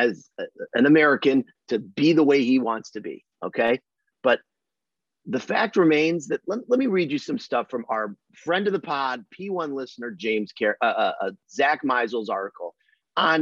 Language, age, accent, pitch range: English, 30-49, American, 120-185 Hz